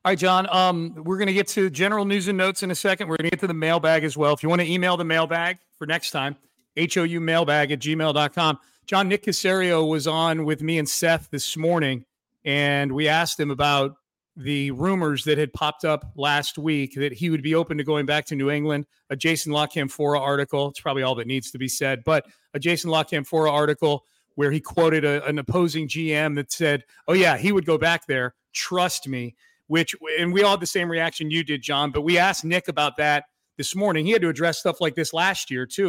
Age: 40-59